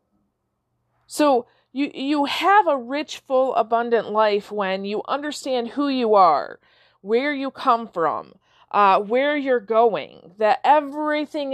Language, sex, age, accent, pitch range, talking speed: English, female, 40-59, American, 205-270 Hz, 130 wpm